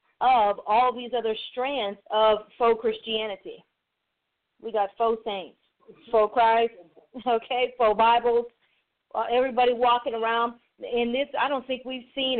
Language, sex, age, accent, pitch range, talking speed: English, female, 40-59, American, 220-280 Hz, 130 wpm